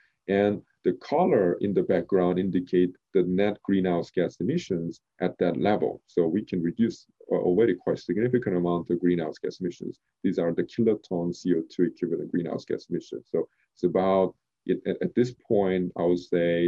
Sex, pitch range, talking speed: male, 85-100 Hz, 165 wpm